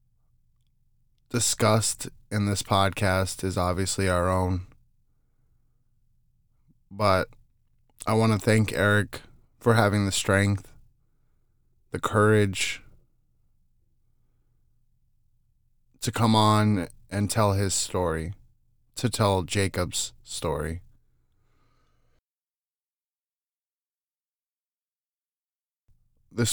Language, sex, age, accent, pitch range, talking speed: English, male, 20-39, American, 95-115 Hz, 70 wpm